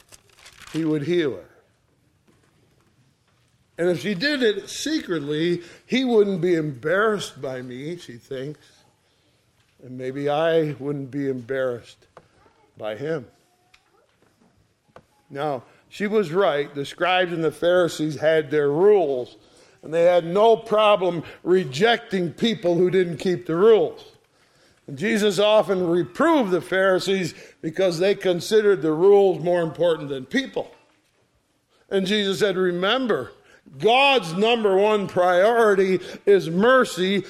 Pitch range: 155-210 Hz